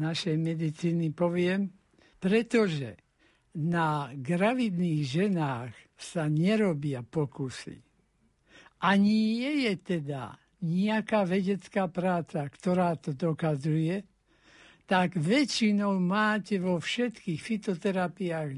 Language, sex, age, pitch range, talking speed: Slovak, male, 60-79, 165-205 Hz, 85 wpm